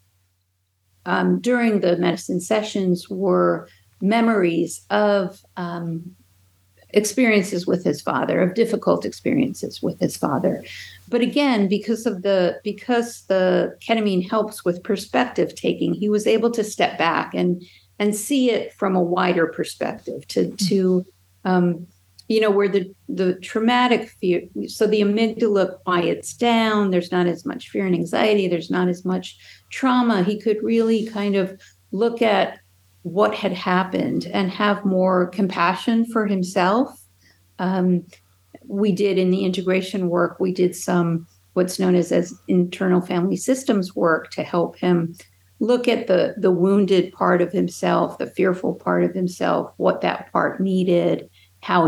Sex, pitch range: female, 170-210 Hz